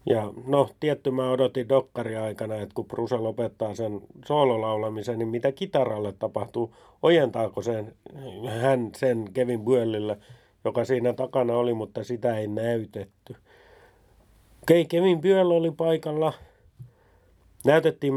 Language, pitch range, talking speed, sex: Finnish, 110-135 Hz, 120 wpm, male